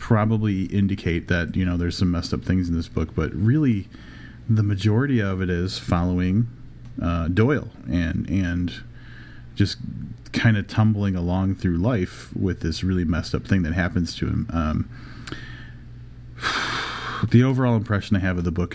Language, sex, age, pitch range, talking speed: English, male, 30-49, 90-115 Hz, 165 wpm